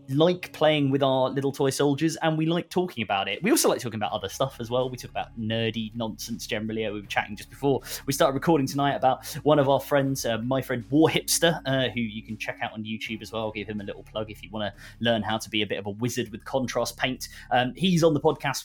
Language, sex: English, male